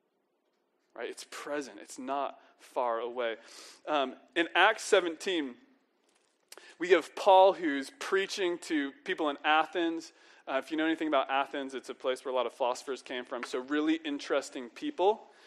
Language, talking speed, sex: English, 160 wpm, male